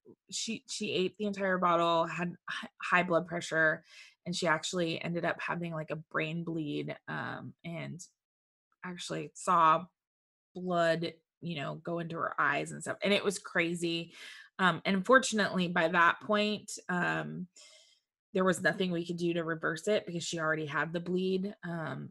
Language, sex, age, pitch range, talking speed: English, female, 20-39, 165-200 Hz, 165 wpm